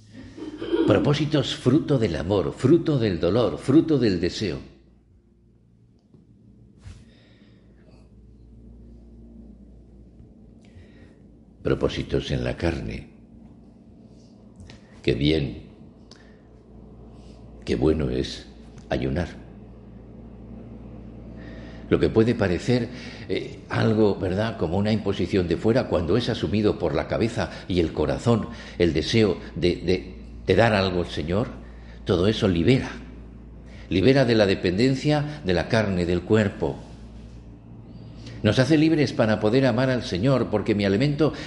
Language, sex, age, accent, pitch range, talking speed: Spanish, male, 60-79, Spanish, 90-120 Hz, 105 wpm